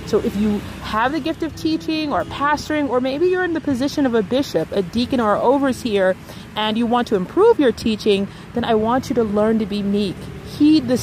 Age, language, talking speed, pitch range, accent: 30-49, English, 225 wpm, 215-270 Hz, American